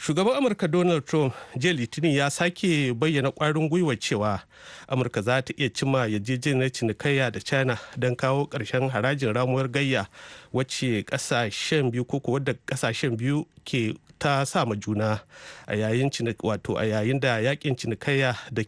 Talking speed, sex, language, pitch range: 150 wpm, male, English, 115-150 Hz